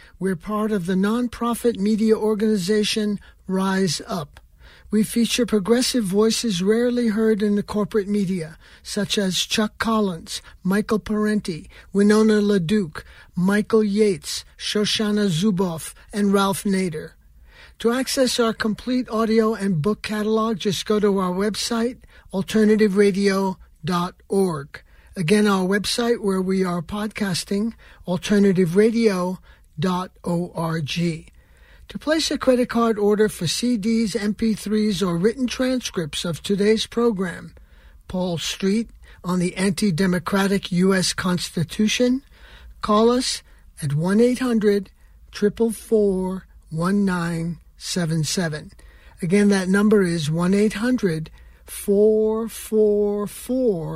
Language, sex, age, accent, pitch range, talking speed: English, male, 60-79, American, 180-220 Hz, 105 wpm